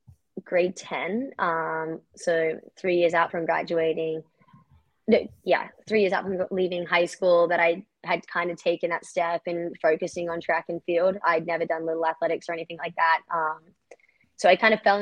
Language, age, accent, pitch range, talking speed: English, 20-39, American, 165-180 Hz, 190 wpm